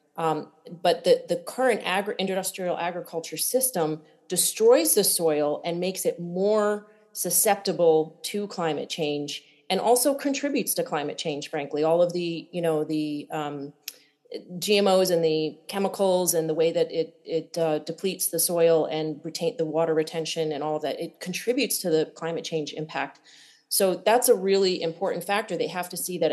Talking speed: 170 wpm